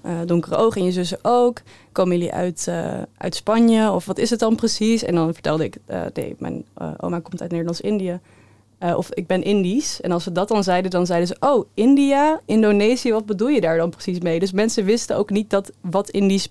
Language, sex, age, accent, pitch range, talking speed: Dutch, female, 20-39, Dutch, 170-195 Hz, 220 wpm